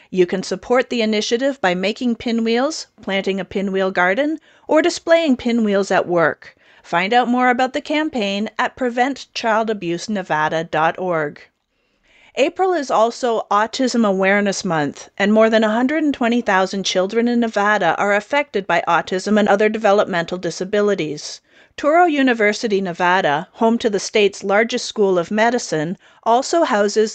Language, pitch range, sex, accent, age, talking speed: English, 185-245 Hz, female, American, 40-59, 130 wpm